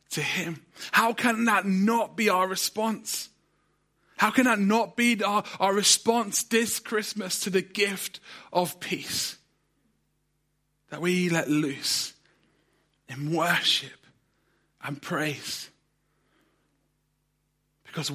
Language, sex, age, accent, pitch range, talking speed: English, male, 30-49, British, 150-185 Hz, 110 wpm